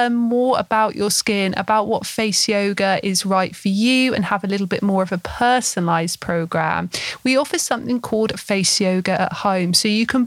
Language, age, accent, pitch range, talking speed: English, 30-49, British, 190-245 Hz, 195 wpm